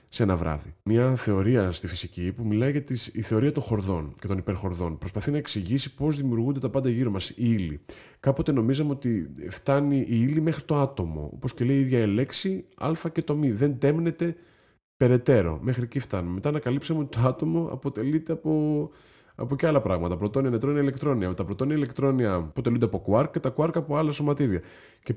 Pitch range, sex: 100-140 Hz, male